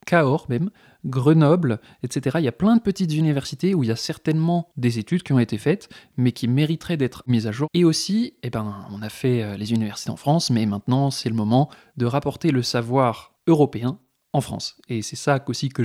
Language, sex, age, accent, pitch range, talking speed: French, male, 20-39, French, 120-155 Hz, 210 wpm